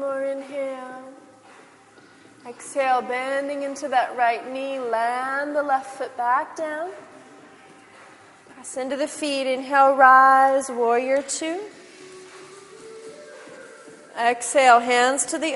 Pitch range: 245-305 Hz